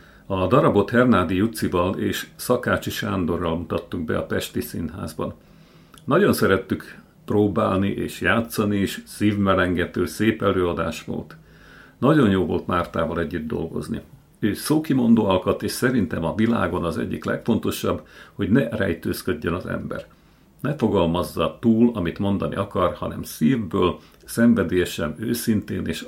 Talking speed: 125 wpm